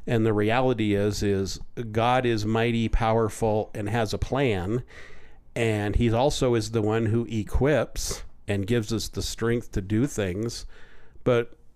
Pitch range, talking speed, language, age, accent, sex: 105-125 Hz, 155 wpm, English, 50-69, American, male